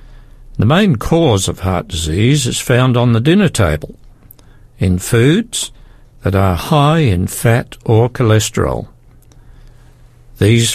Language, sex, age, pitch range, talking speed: English, male, 60-79, 115-145 Hz, 125 wpm